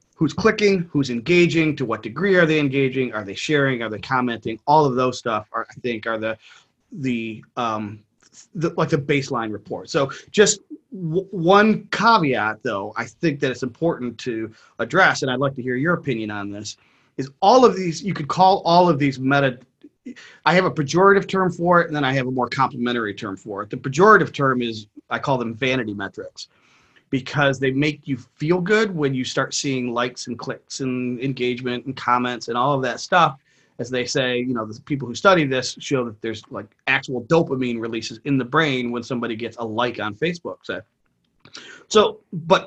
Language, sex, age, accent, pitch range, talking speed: English, male, 30-49, American, 120-165 Hz, 200 wpm